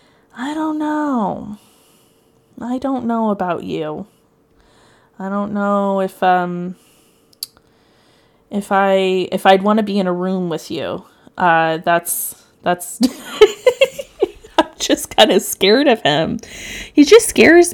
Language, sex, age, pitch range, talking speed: English, female, 20-39, 180-235 Hz, 130 wpm